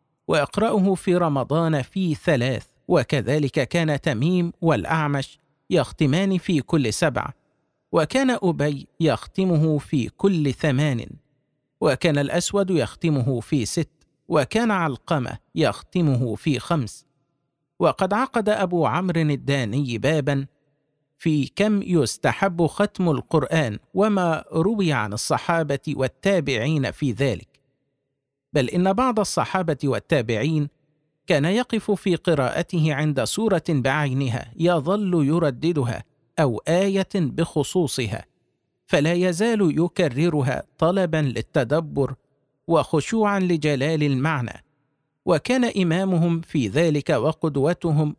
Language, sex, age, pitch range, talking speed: Arabic, male, 50-69, 140-175 Hz, 95 wpm